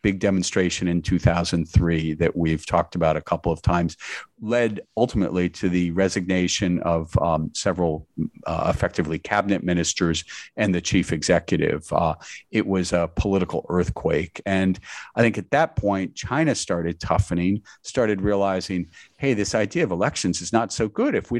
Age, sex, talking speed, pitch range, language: 50-69, male, 155 wpm, 90-105 Hz, English